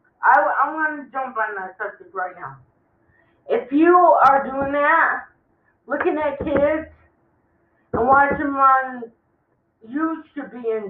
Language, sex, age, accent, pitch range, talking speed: English, female, 50-69, American, 230-295 Hz, 145 wpm